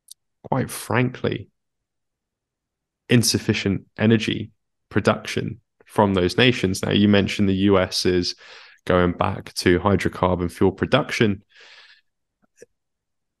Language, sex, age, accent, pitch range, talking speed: English, male, 20-39, British, 95-110 Hz, 90 wpm